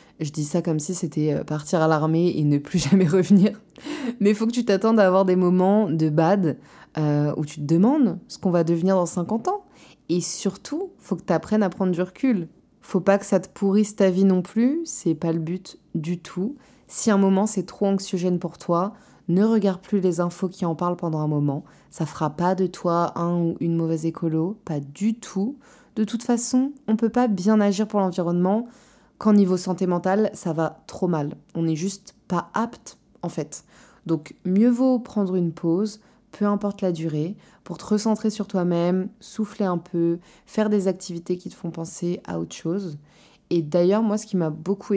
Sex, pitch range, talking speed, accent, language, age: female, 170-215 Hz, 210 wpm, French, French, 20-39